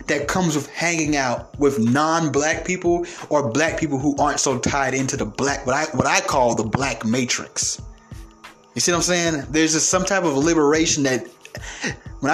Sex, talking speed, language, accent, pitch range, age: male, 190 wpm, English, American, 130-180 Hz, 20-39